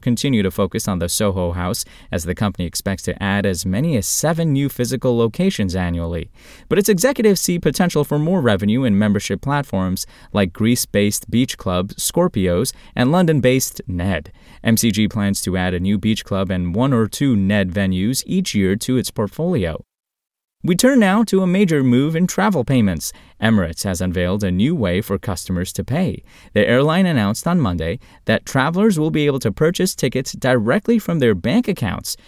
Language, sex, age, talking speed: English, male, 20-39, 180 wpm